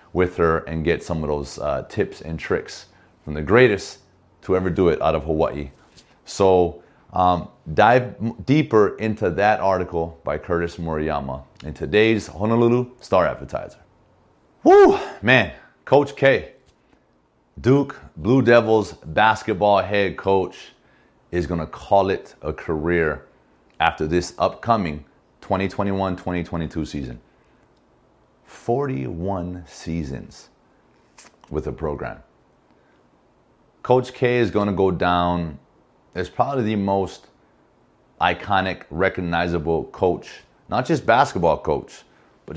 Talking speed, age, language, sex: 115 wpm, 30-49, English, male